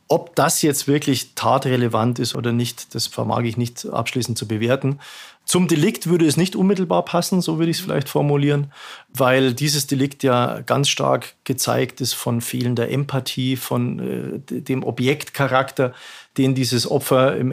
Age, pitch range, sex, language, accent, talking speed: 40-59, 120-140 Hz, male, German, German, 160 wpm